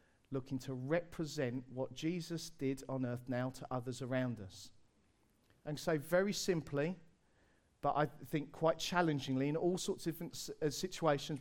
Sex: male